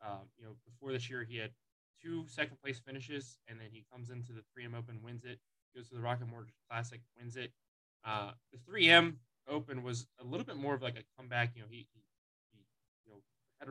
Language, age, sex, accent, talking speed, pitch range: English, 20-39, male, American, 225 wpm, 110-125 Hz